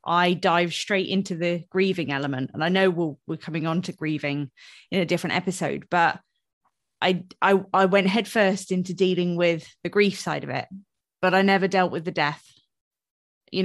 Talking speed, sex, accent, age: 180 wpm, female, British, 20-39